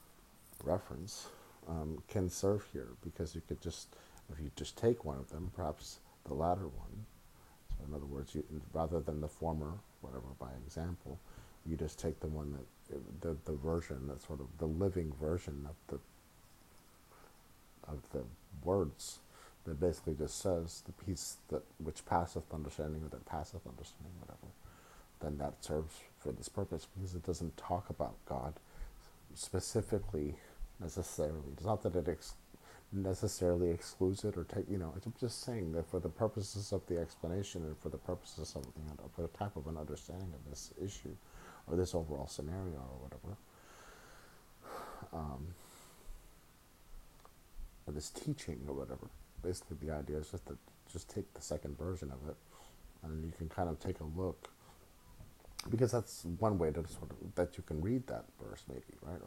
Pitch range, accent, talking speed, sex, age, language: 75-90 Hz, American, 170 wpm, male, 50-69, English